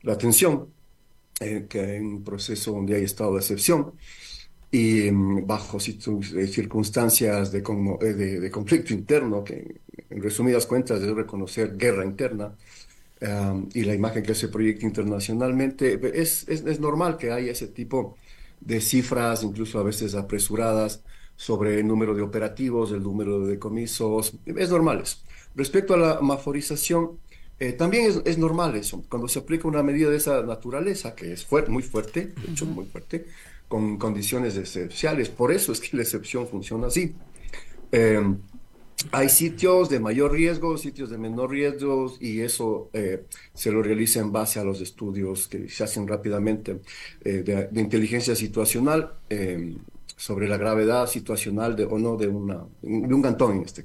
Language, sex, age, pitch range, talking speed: Spanish, male, 50-69, 105-130 Hz, 165 wpm